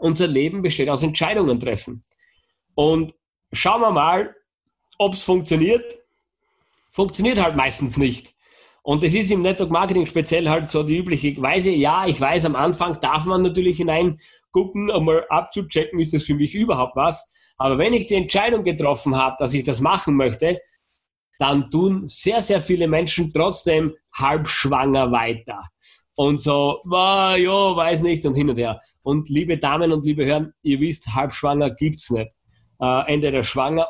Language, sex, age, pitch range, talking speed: German, male, 30-49, 135-180 Hz, 165 wpm